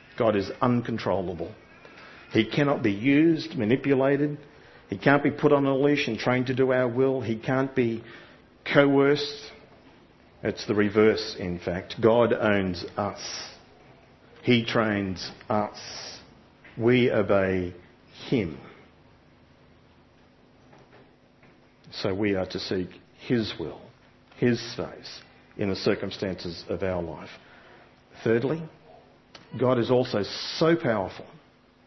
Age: 50-69